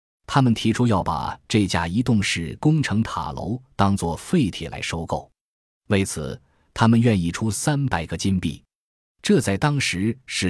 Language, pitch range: Chinese, 85-115 Hz